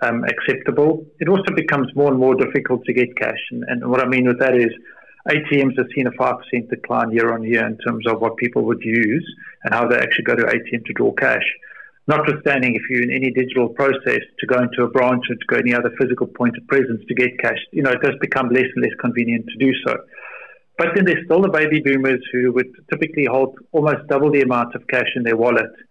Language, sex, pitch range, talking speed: English, male, 120-135 Hz, 235 wpm